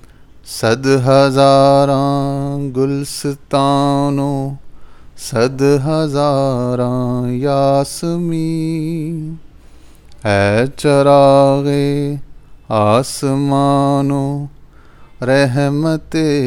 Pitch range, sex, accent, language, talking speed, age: 135-170 Hz, male, Indian, English, 35 wpm, 30-49